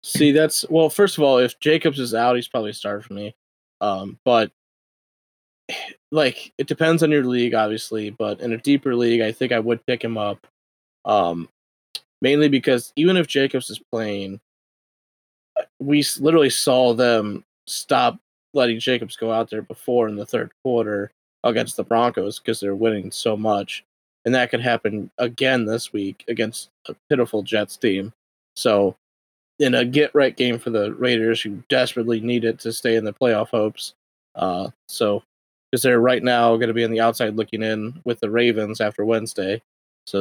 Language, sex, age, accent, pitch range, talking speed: English, male, 20-39, American, 110-125 Hz, 175 wpm